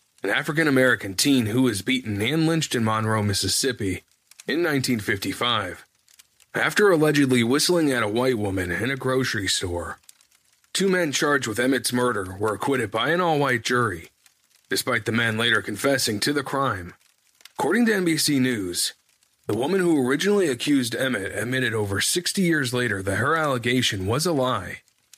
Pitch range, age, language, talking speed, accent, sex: 110-150 Hz, 30-49, English, 155 wpm, American, male